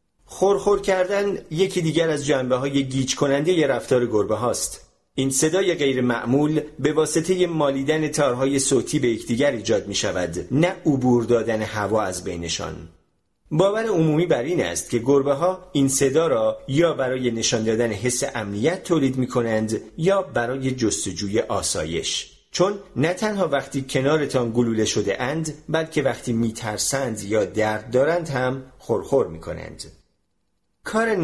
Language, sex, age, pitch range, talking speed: Persian, male, 40-59, 120-160 Hz, 150 wpm